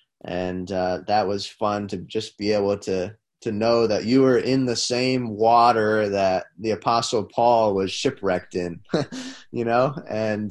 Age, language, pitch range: 20-39, English, 100-120 Hz